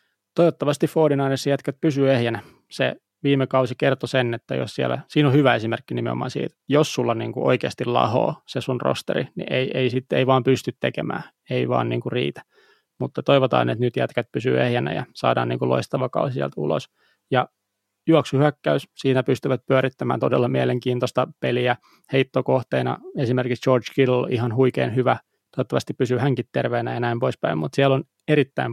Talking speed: 165 wpm